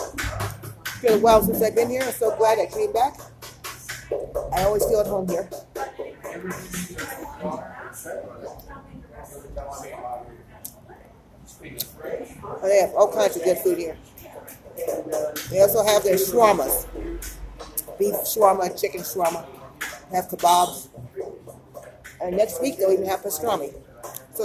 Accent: American